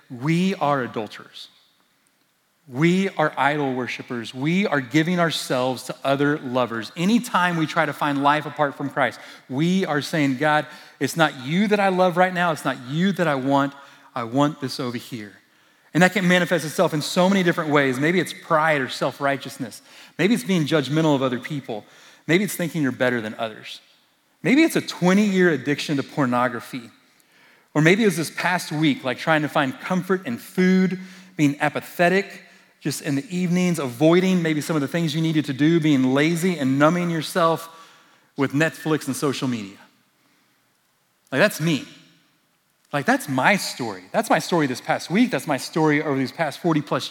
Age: 30-49